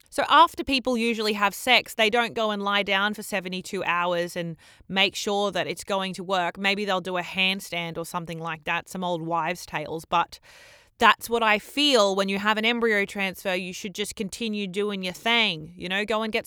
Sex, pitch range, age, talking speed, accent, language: female, 180-215 Hz, 20-39, 215 wpm, Australian, English